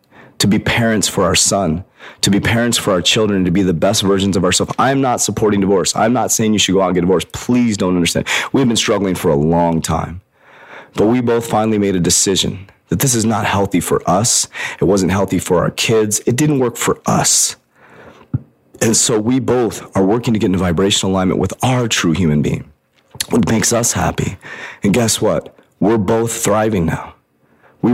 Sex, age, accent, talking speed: male, 30-49, American, 205 wpm